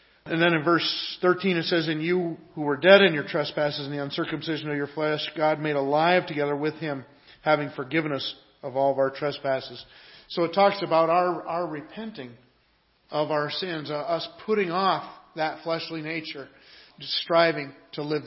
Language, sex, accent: English, male, American